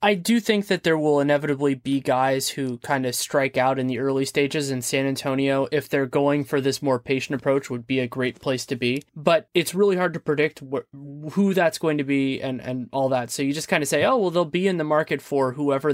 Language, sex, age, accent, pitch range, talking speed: English, male, 20-39, American, 130-160 Hz, 250 wpm